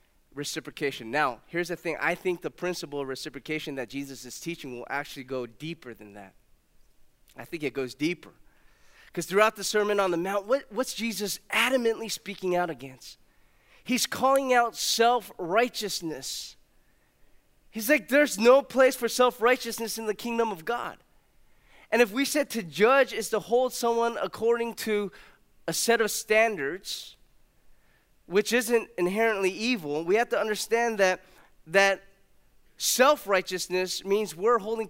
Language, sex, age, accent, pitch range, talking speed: English, male, 20-39, American, 145-225 Hz, 145 wpm